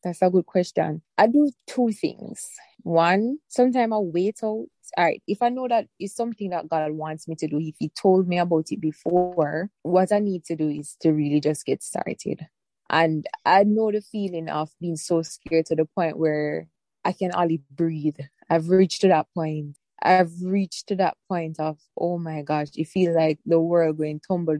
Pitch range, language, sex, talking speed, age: 155-190 Hz, English, female, 200 wpm, 20-39